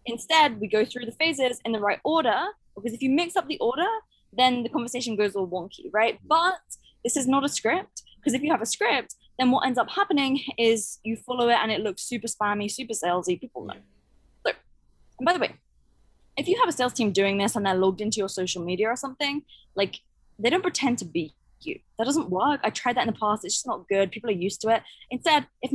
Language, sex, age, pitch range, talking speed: English, female, 20-39, 215-285 Hz, 240 wpm